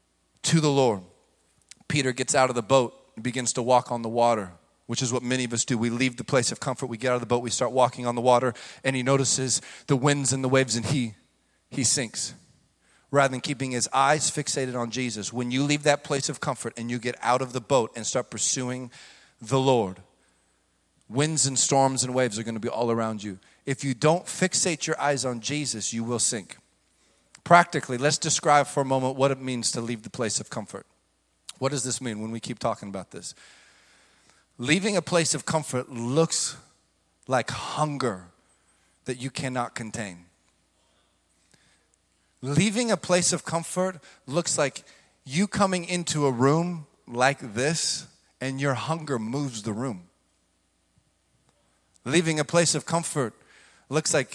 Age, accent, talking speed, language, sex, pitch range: 40-59, American, 185 wpm, English, male, 115-145 Hz